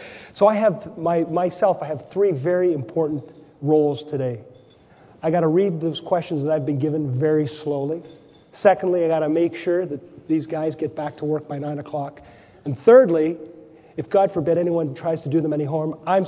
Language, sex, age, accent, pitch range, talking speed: English, male, 40-59, American, 155-185 Hz, 195 wpm